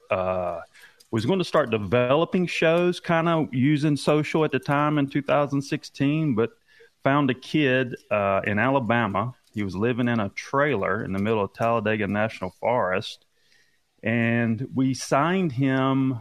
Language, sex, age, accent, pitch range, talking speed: English, male, 40-59, American, 105-140 Hz, 150 wpm